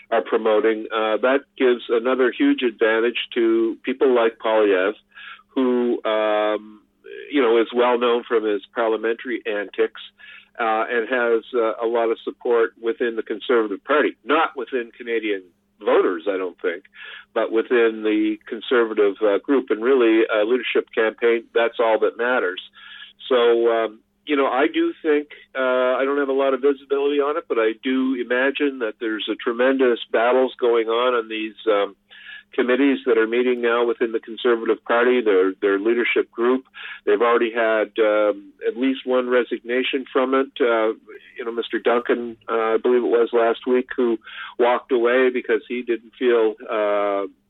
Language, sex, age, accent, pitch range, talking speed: English, male, 50-69, American, 115-155 Hz, 165 wpm